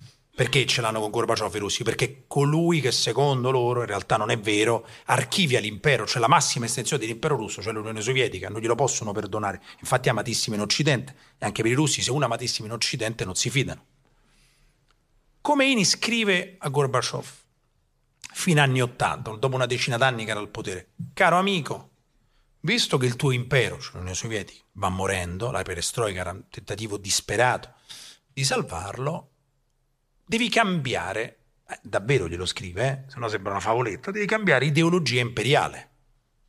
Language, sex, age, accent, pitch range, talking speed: Italian, male, 40-59, native, 110-145 Hz, 165 wpm